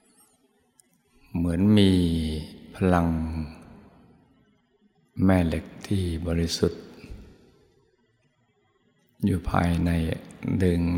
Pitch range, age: 85-100 Hz, 60-79